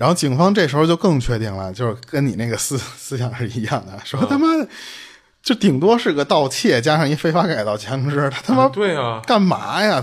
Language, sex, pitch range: Chinese, male, 115-160 Hz